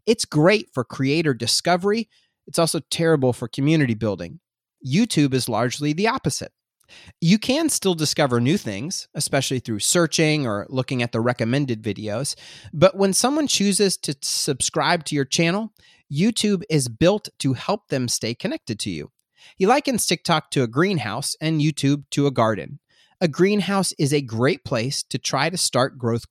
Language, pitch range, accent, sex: English, 125-170 Hz, American, male